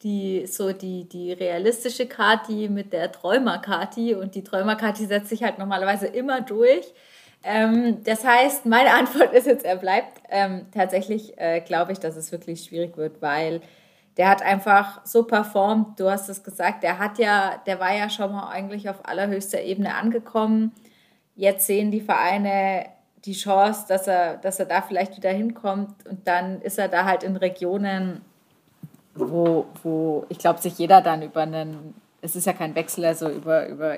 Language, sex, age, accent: German, female, 20-39, German